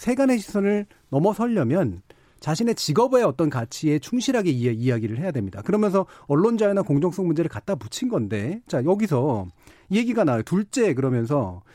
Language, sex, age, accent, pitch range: Korean, male, 40-59, native, 135-205 Hz